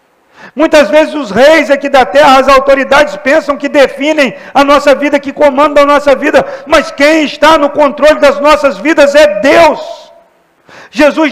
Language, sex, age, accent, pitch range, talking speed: Portuguese, male, 50-69, Brazilian, 215-280 Hz, 165 wpm